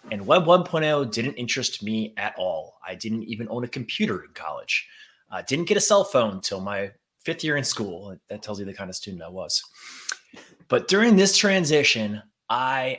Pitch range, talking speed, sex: 120-180 Hz, 195 wpm, male